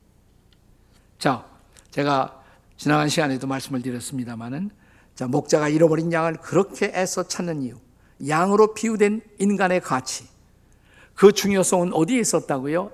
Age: 50-69